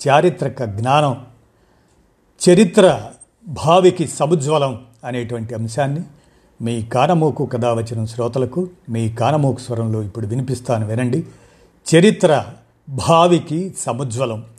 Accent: native